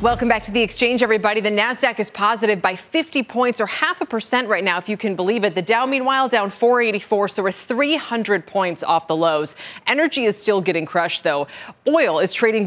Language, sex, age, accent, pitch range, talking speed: English, female, 20-39, American, 180-220 Hz, 215 wpm